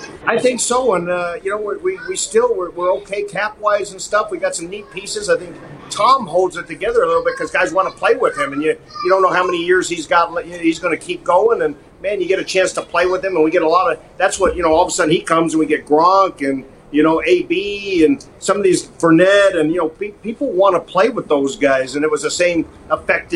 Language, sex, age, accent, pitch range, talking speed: English, male, 50-69, American, 160-260 Hz, 285 wpm